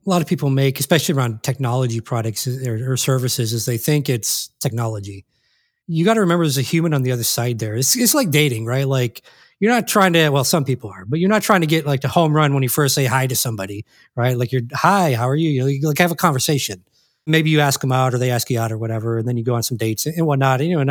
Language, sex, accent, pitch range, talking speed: English, male, American, 125-160 Hz, 280 wpm